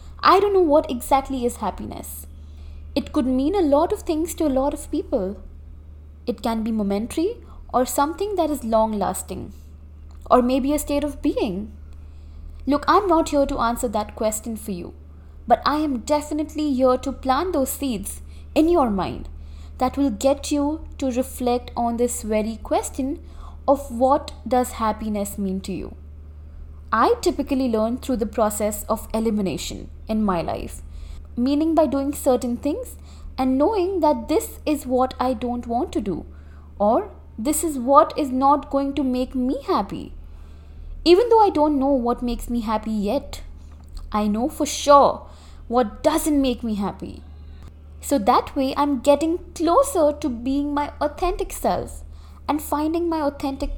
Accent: Indian